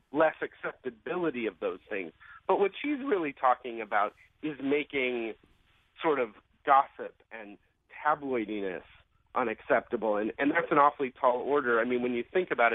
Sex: male